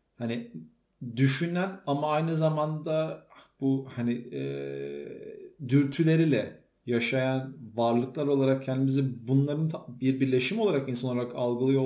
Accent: native